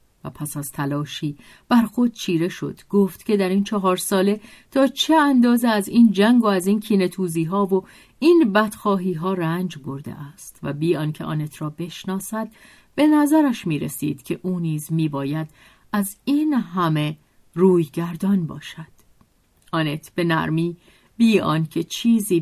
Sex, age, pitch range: female, 50-69, 155-220 Hz